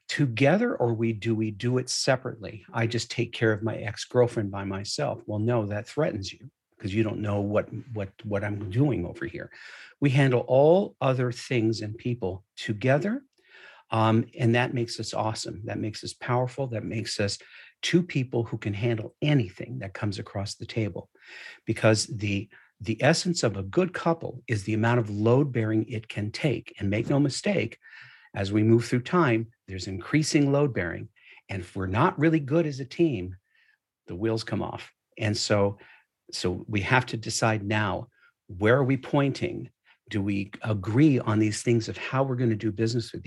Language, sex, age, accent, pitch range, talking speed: English, male, 50-69, American, 105-125 Hz, 185 wpm